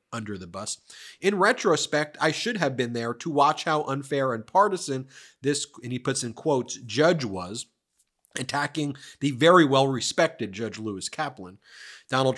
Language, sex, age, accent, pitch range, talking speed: English, male, 30-49, American, 125-160 Hz, 155 wpm